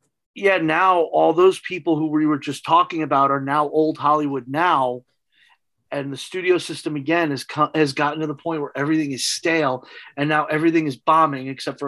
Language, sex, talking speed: English, male, 195 wpm